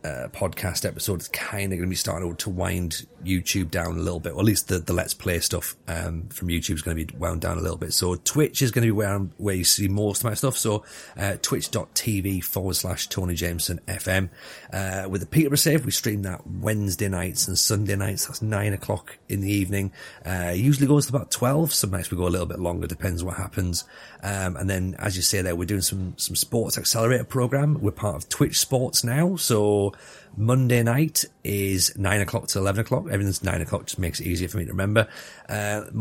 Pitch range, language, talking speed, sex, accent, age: 90-110 Hz, English, 230 wpm, male, British, 30-49